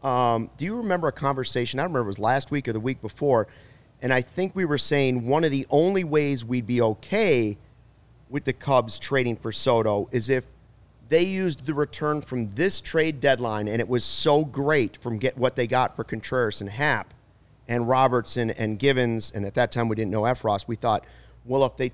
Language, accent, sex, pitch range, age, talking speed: English, American, male, 115-145 Hz, 30-49, 210 wpm